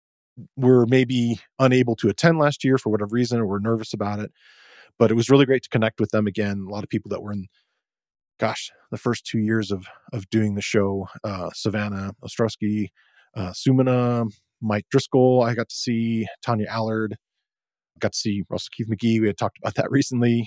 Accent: American